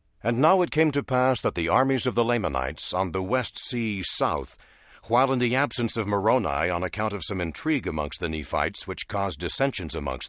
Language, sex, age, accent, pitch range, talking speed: English, male, 60-79, American, 100-135 Hz, 205 wpm